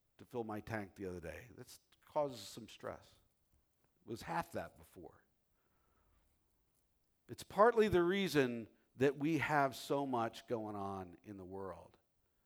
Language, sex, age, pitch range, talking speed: English, male, 50-69, 110-175 Hz, 145 wpm